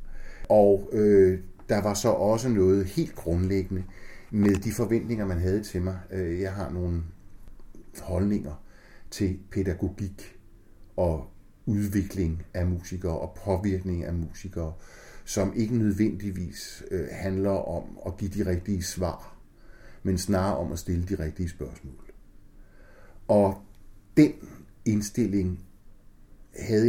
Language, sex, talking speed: Danish, male, 115 wpm